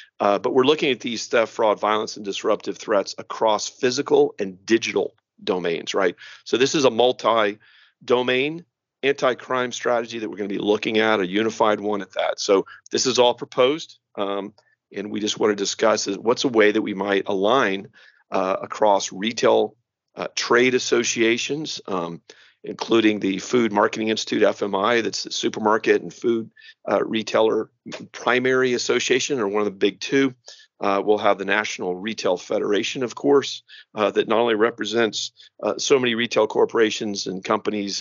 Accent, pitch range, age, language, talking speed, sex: American, 105-125 Hz, 40-59, English, 165 wpm, male